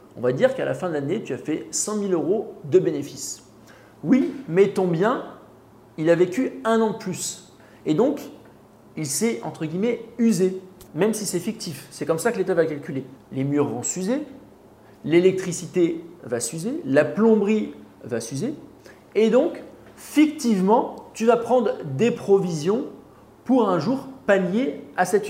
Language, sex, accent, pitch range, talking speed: French, male, French, 135-220 Hz, 165 wpm